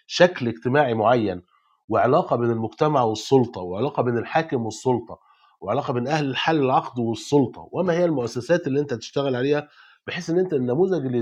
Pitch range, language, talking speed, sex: 115-155 Hz, Arabic, 155 wpm, male